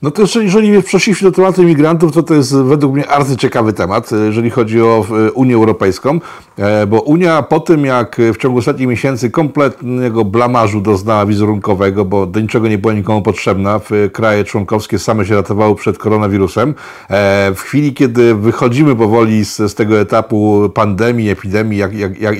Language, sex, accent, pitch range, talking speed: Polish, male, native, 110-140 Hz, 160 wpm